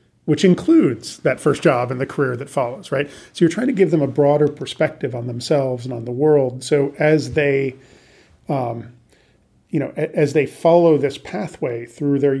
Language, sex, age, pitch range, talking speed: English, male, 40-59, 125-150 Hz, 190 wpm